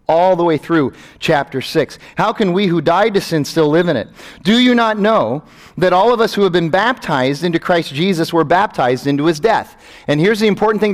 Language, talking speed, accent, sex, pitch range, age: English, 230 wpm, American, male, 155-215 Hz, 40-59